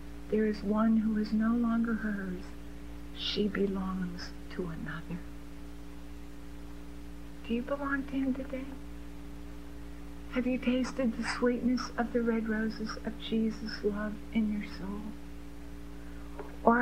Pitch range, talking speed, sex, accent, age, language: 195-240 Hz, 120 wpm, female, American, 60-79, English